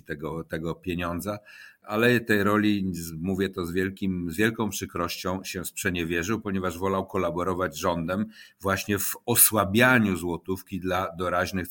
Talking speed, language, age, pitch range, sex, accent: 130 wpm, Polish, 50-69, 95-120 Hz, male, native